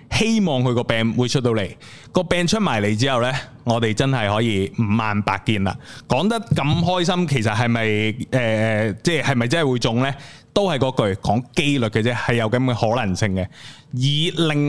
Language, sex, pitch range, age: Chinese, male, 110-145 Hz, 20-39